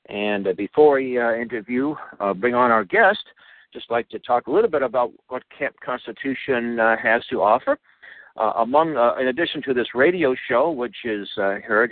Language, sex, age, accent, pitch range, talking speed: English, male, 60-79, American, 100-120 Hz, 190 wpm